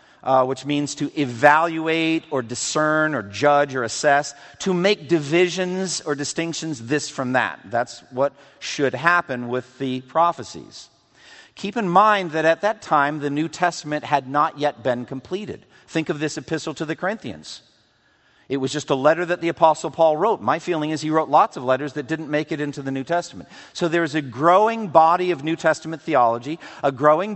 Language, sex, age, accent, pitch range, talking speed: English, male, 50-69, American, 145-175 Hz, 185 wpm